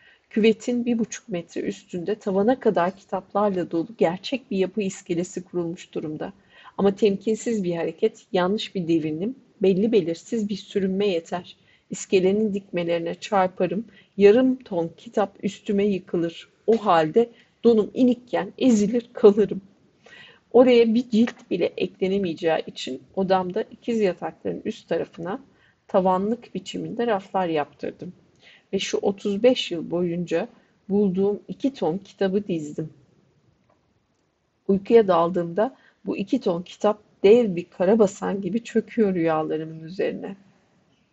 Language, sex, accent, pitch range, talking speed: Turkish, female, native, 180-225 Hz, 115 wpm